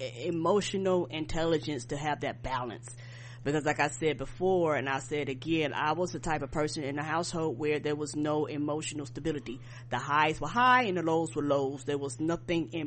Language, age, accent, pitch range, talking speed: English, 30-49, American, 135-175 Hz, 200 wpm